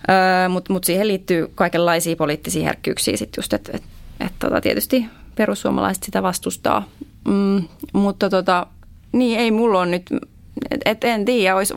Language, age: Finnish, 20-39